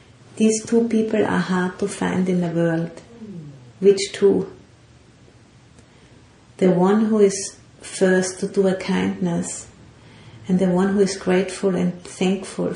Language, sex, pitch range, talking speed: English, female, 135-195 Hz, 135 wpm